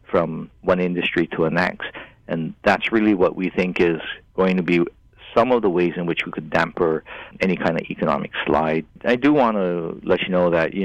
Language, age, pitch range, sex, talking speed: English, 50-69, 90-105 Hz, male, 215 wpm